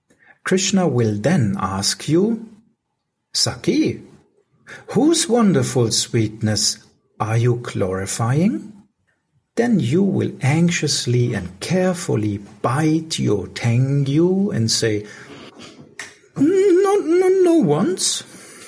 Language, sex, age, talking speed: English, male, 60-79, 85 wpm